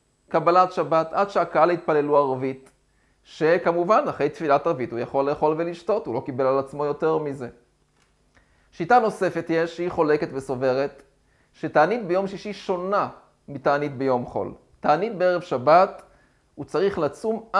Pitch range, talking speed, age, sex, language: 140-190 Hz, 135 wpm, 30-49, male, Hebrew